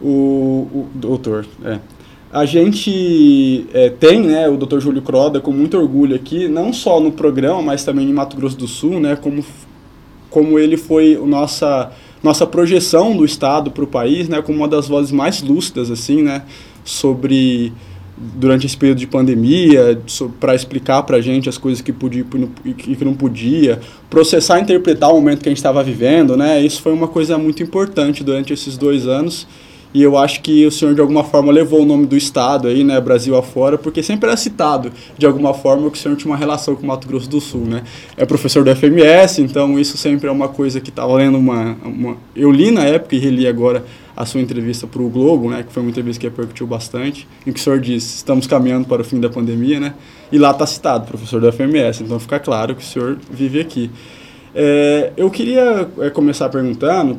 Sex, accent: male, Brazilian